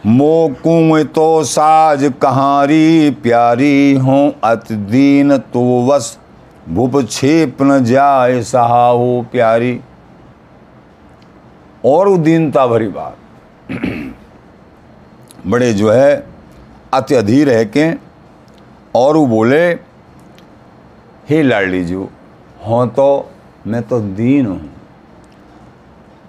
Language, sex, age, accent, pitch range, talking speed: Hindi, male, 50-69, native, 120-160 Hz, 90 wpm